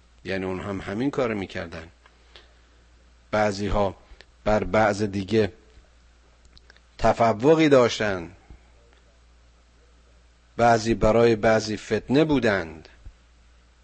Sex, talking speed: male, 80 wpm